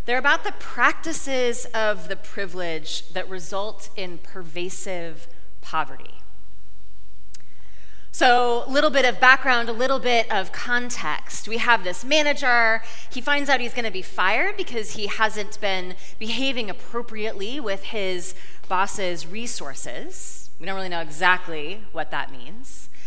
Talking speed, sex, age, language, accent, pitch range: 135 wpm, female, 30-49, English, American, 185-250 Hz